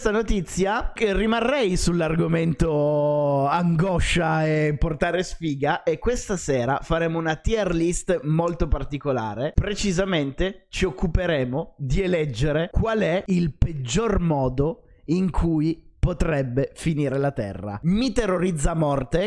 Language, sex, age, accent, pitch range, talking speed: Italian, male, 30-49, native, 145-180 Hz, 110 wpm